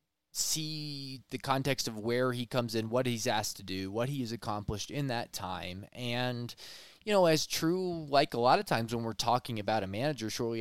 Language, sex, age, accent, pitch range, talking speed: English, male, 20-39, American, 105-130 Hz, 210 wpm